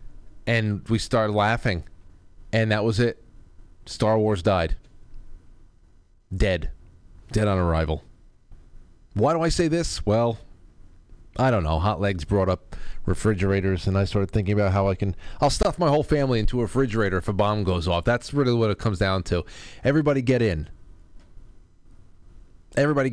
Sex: male